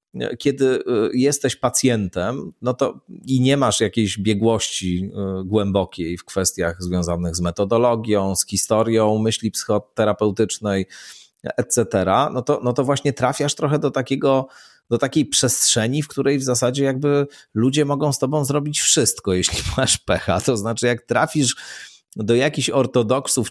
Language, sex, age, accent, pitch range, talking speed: Polish, male, 30-49, native, 100-135 Hz, 135 wpm